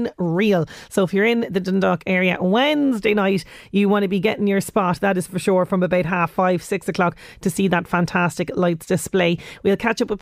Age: 30-49